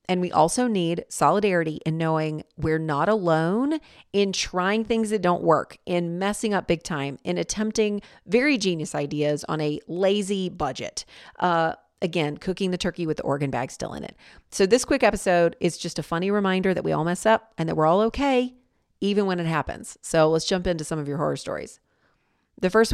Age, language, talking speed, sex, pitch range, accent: 40-59, English, 200 wpm, female, 160-205 Hz, American